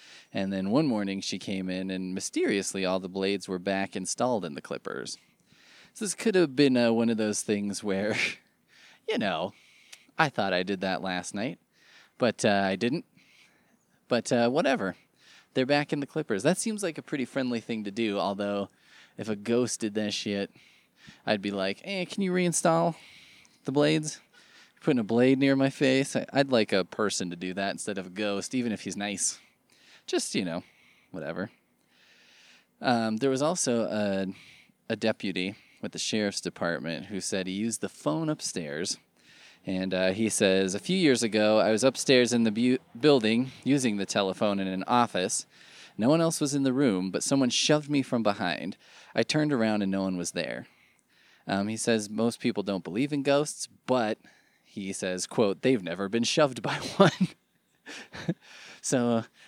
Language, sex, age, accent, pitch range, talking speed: English, male, 20-39, American, 100-135 Hz, 185 wpm